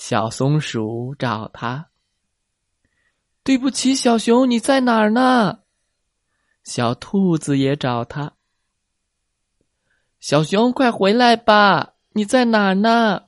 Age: 20-39